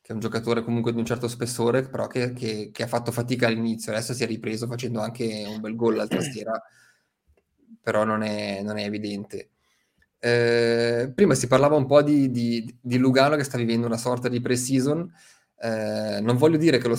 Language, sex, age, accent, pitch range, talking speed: Italian, male, 20-39, native, 110-130 Hz, 185 wpm